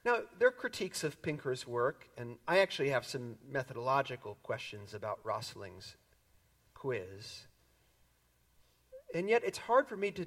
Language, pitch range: English, 115-160 Hz